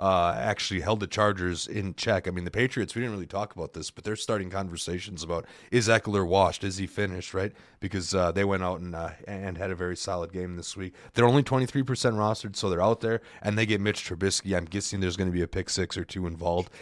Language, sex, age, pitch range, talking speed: English, male, 30-49, 95-125 Hz, 245 wpm